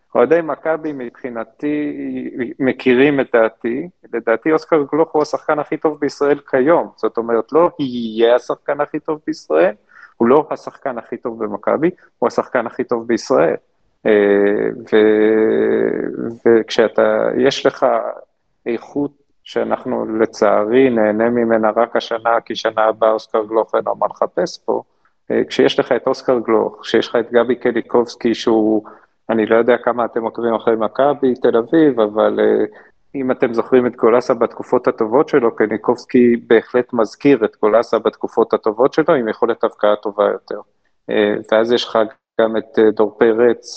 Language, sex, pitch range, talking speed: Hebrew, male, 110-130 Hz, 145 wpm